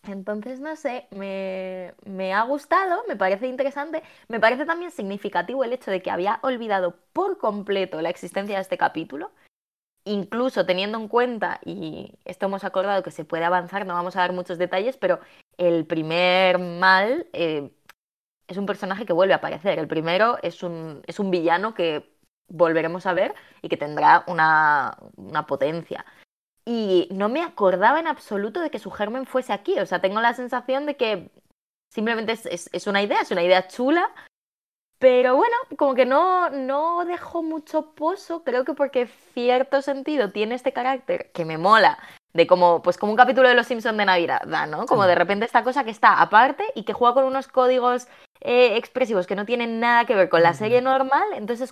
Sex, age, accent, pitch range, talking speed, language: female, 20-39, Spanish, 185-265 Hz, 190 wpm, Spanish